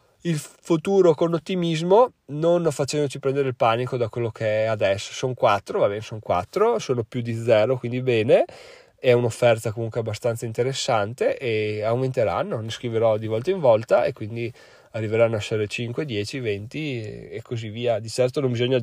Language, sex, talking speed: Italian, male, 170 wpm